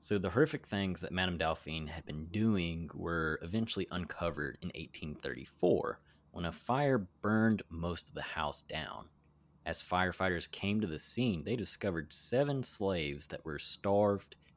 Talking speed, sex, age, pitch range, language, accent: 150 wpm, male, 20-39, 80-100 Hz, English, American